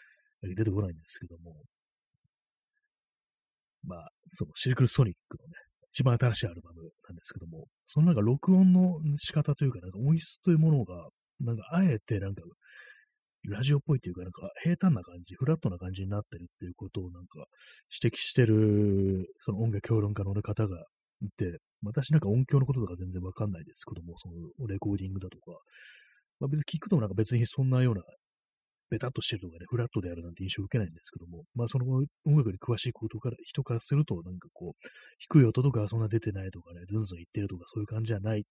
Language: Japanese